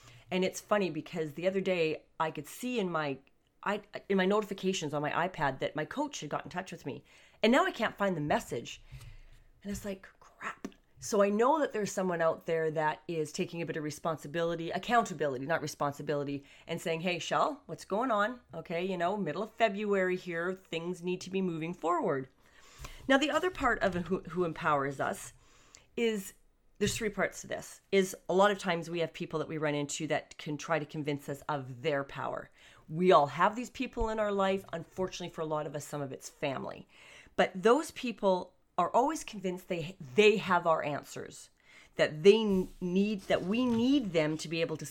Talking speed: 205 wpm